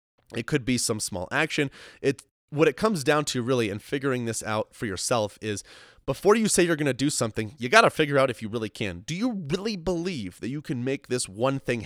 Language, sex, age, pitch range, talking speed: English, male, 30-49, 110-145 Hz, 245 wpm